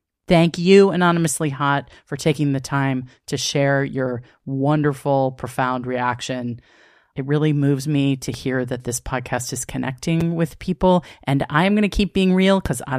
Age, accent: 40-59, American